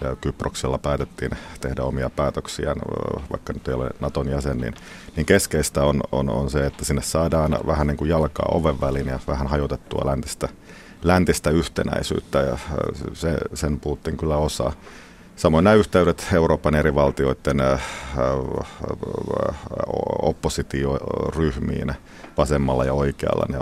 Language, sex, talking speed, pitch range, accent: Finnish, male, 130 wpm, 70-80 Hz, native